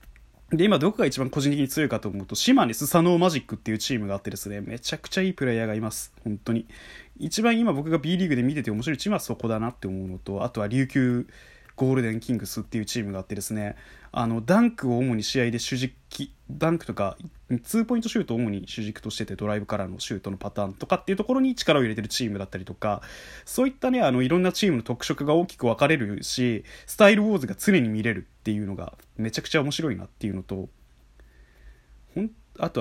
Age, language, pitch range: 20-39, Japanese, 105-165 Hz